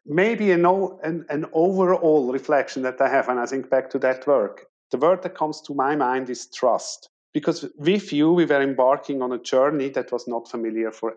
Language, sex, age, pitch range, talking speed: English, male, 50-69, 130-170 Hz, 215 wpm